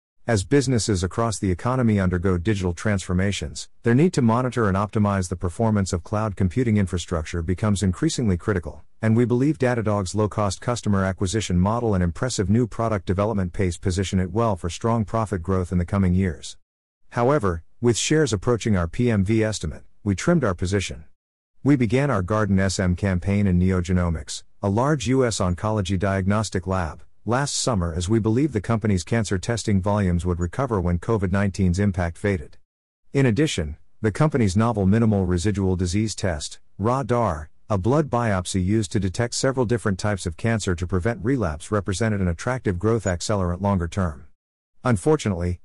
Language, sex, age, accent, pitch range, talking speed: English, male, 50-69, American, 90-115 Hz, 160 wpm